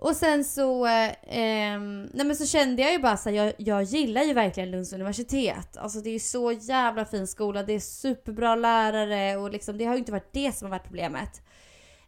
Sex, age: female, 20-39